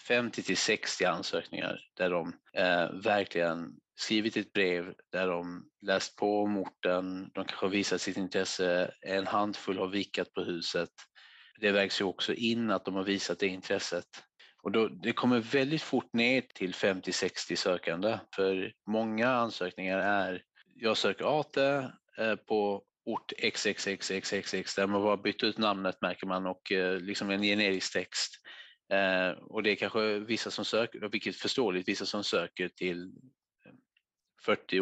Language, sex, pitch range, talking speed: Swedish, male, 95-105 Hz, 140 wpm